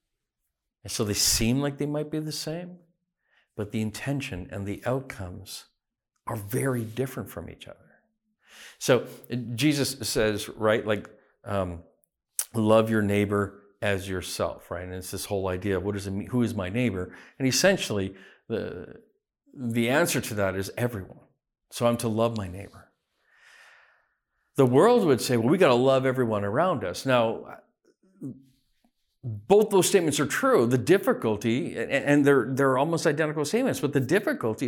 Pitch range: 100-140 Hz